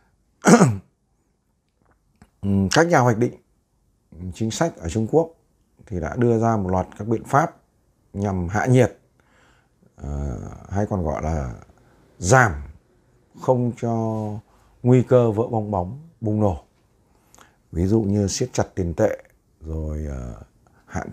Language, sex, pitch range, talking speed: Vietnamese, male, 100-125 Hz, 130 wpm